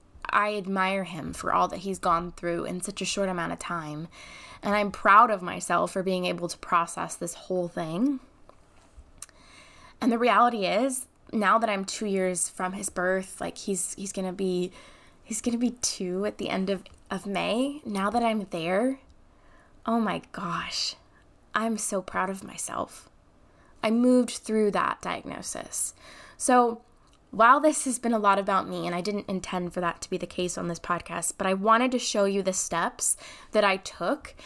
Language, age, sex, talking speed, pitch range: English, 20-39, female, 185 wpm, 185-225 Hz